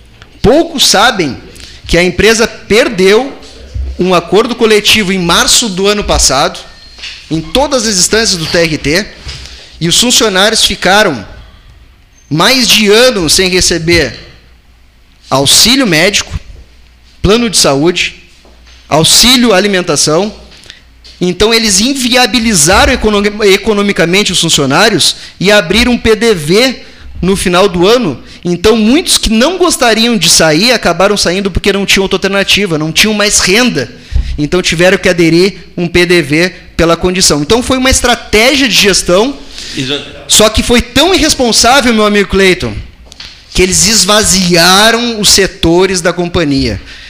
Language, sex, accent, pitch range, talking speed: Portuguese, male, Brazilian, 165-220 Hz, 125 wpm